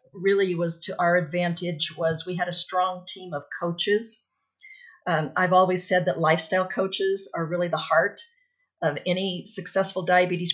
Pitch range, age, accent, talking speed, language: 170-200 Hz, 50-69, American, 160 wpm, English